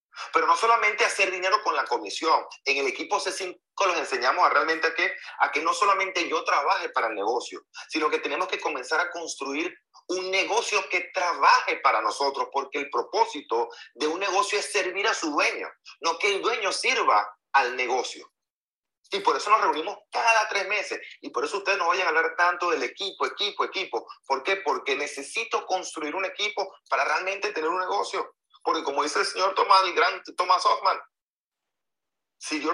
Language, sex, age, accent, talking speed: Spanish, male, 30-49, Venezuelan, 190 wpm